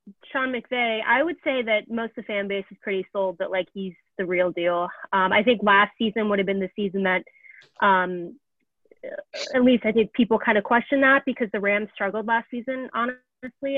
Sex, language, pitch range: female, English, 190-230 Hz